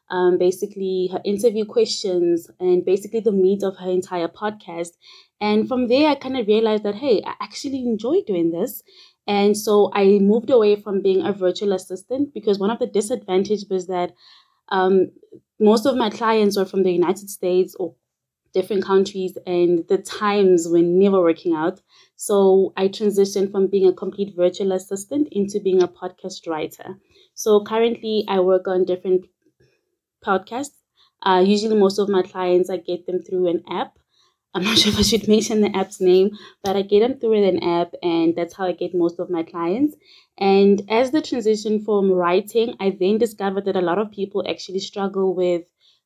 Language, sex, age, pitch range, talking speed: English, female, 20-39, 185-215 Hz, 180 wpm